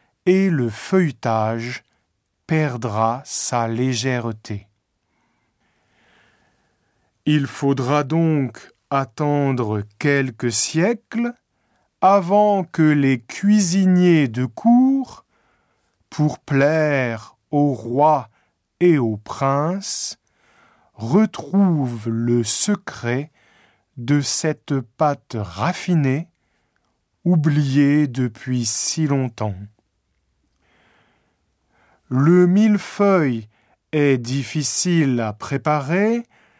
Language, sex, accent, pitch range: Japanese, male, French, 120-180 Hz